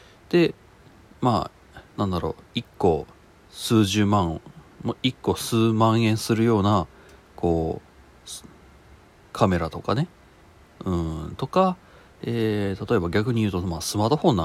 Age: 40-59